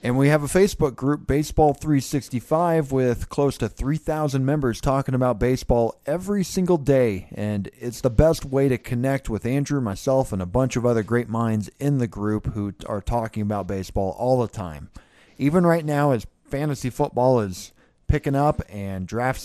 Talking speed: 180 wpm